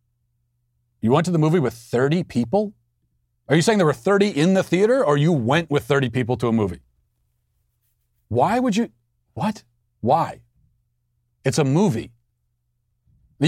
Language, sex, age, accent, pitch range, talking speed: English, male, 40-59, American, 120-155 Hz, 150 wpm